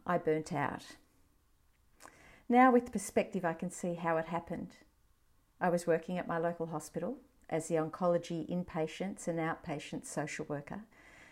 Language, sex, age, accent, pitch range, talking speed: English, female, 50-69, Australian, 165-190 Hz, 145 wpm